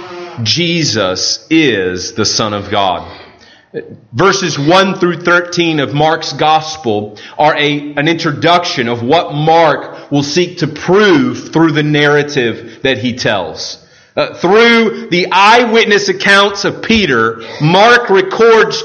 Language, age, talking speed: English, 40-59, 125 wpm